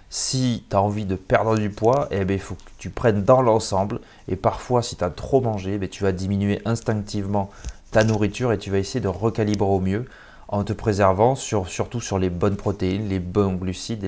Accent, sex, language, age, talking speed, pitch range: French, male, French, 30-49, 210 wpm, 95-120 Hz